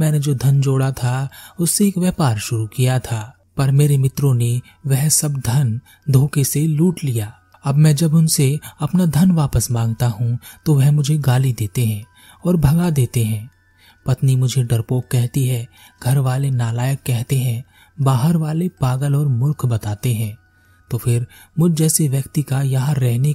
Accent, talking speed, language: native, 170 wpm, Hindi